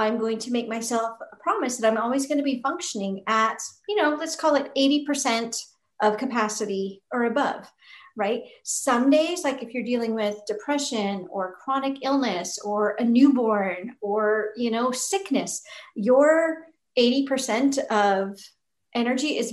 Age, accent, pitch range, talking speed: 40-59, American, 215-275 Hz, 150 wpm